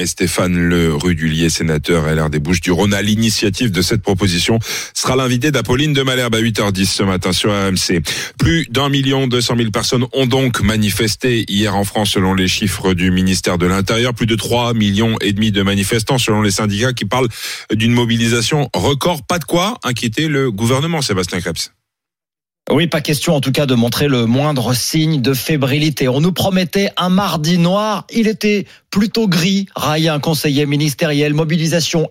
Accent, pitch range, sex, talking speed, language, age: French, 115-165 Hz, male, 180 wpm, French, 40-59